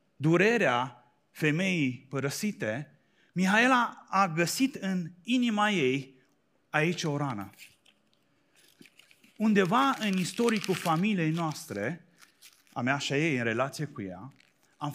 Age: 30-49